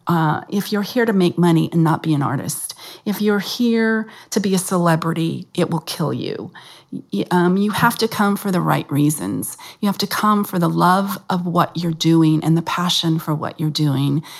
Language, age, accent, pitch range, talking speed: English, 40-59, American, 155-185 Hz, 210 wpm